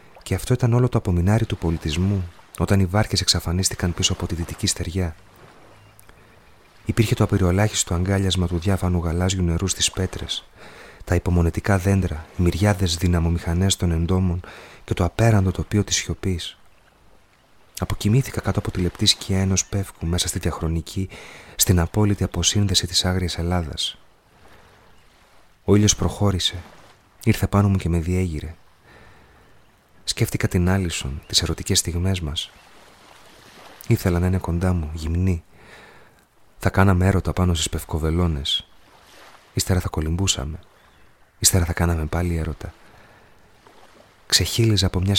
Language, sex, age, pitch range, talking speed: Greek, male, 30-49, 85-100 Hz, 130 wpm